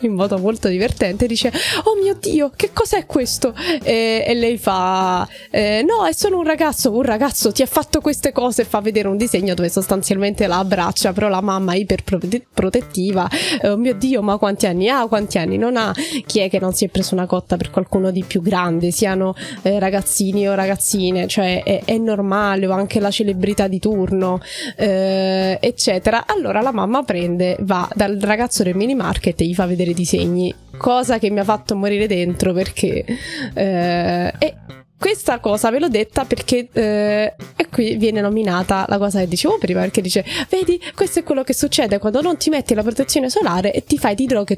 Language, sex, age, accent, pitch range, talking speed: Italian, female, 20-39, native, 190-245 Hz, 195 wpm